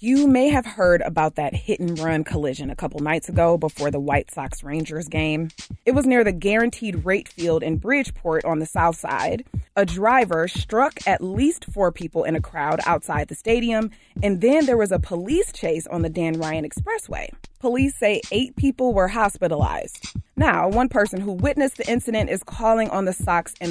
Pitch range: 170-235 Hz